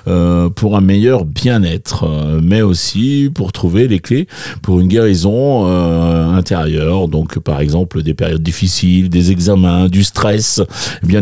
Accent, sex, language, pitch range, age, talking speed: French, male, French, 90-115 Hz, 40-59, 150 wpm